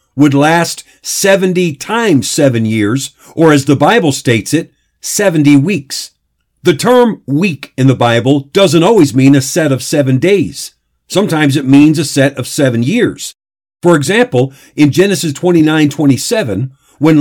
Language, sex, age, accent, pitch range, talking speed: English, male, 50-69, American, 135-175 Hz, 150 wpm